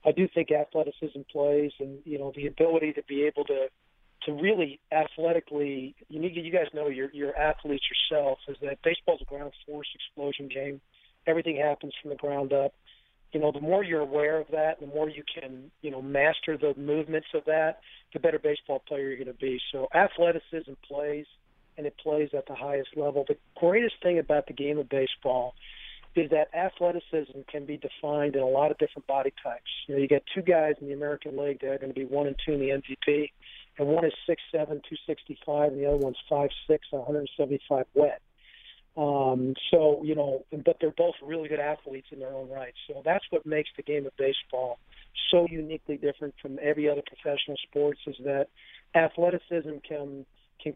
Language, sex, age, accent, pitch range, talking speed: English, male, 40-59, American, 140-155 Hz, 200 wpm